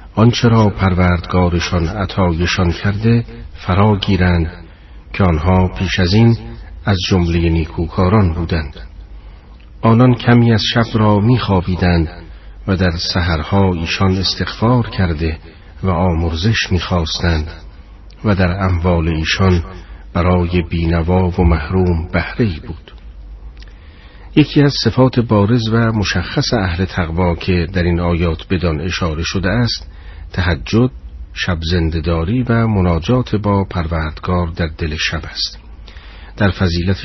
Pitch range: 80-100 Hz